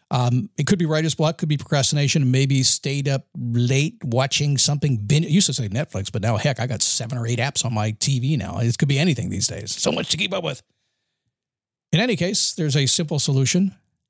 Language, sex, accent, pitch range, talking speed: English, male, American, 120-155 Hz, 225 wpm